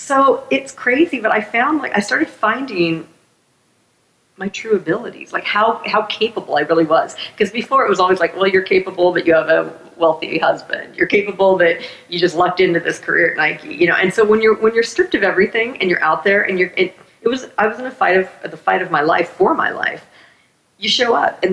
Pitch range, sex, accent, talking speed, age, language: 170-220 Hz, female, American, 235 wpm, 40-59, English